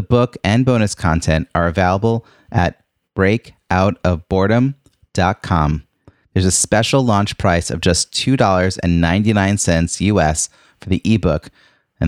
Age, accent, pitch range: 30-49, American, 85-115 Hz